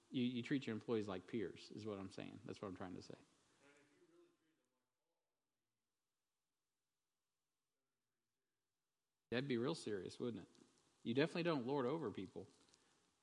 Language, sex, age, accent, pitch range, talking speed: English, male, 50-69, American, 110-135 Hz, 130 wpm